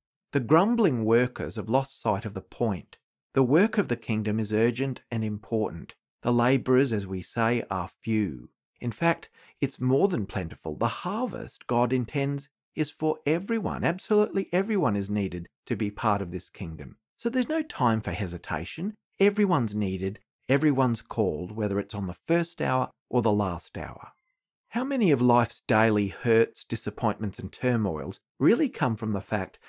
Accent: Australian